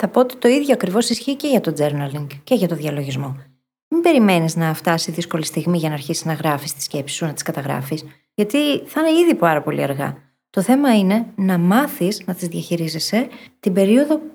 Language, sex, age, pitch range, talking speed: Greek, female, 20-39, 160-245 Hz, 205 wpm